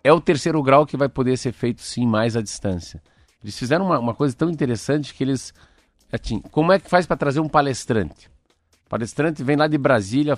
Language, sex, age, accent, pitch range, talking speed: Portuguese, male, 50-69, Brazilian, 105-140 Hz, 210 wpm